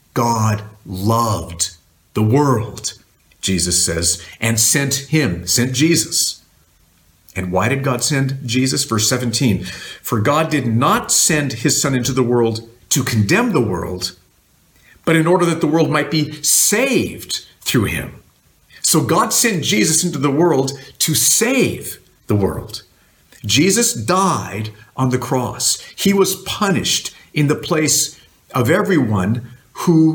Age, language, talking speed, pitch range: 50-69, English, 135 wpm, 110-160 Hz